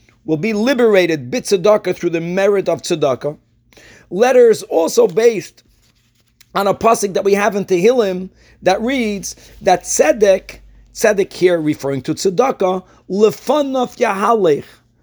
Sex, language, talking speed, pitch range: male, English, 125 wpm, 175-230 Hz